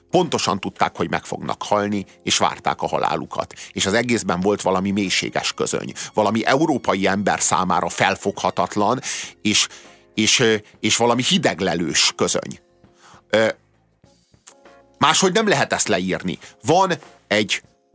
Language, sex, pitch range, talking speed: Hungarian, male, 95-120 Hz, 115 wpm